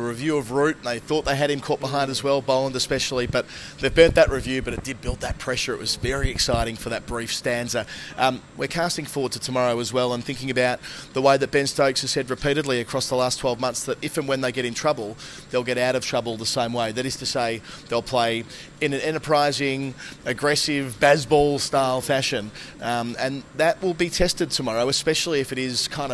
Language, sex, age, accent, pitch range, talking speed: English, male, 30-49, Australian, 125-140 Hz, 225 wpm